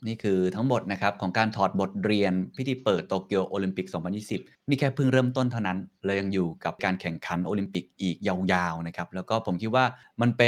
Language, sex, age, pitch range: Thai, male, 20-39, 95-120 Hz